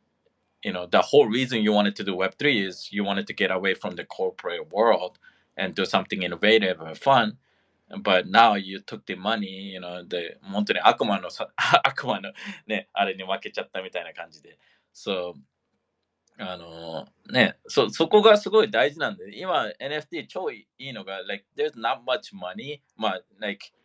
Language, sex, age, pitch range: Japanese, male, 20-39, 95-125 Hz